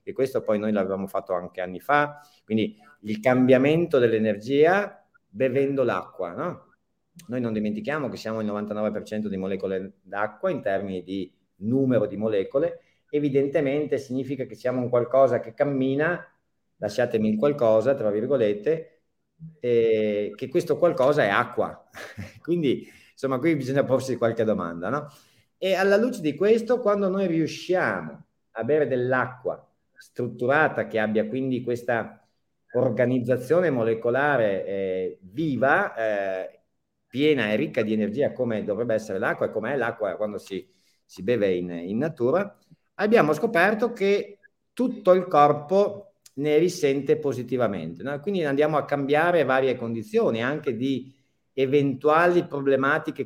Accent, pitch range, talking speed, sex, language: native, 110-155 Hz, 135 wpm, male, Italian